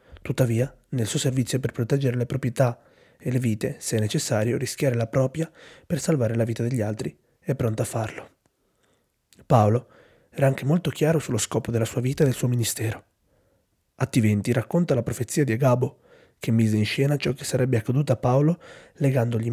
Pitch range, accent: 115-135 Hz, native